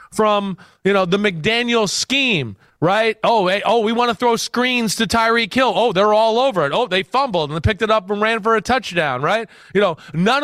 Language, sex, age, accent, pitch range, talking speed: English, male, 30-49, American, 185-230 Hz, 230 wpm